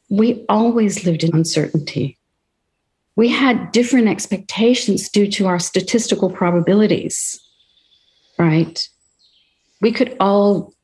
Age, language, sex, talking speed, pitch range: 50-69, English, female, 100 wpm, 165-205 Hz